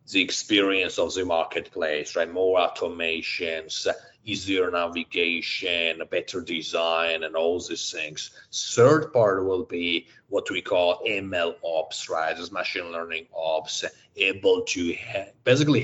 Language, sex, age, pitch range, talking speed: English, male, 30-49, 85-110 Hz, 125 wpm